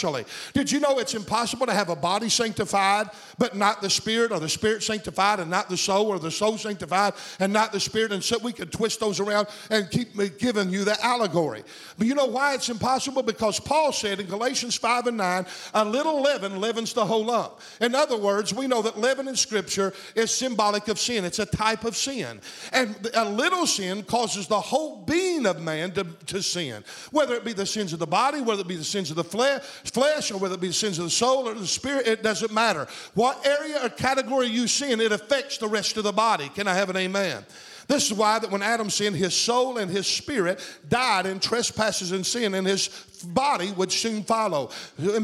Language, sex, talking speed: English, male, 225 wpm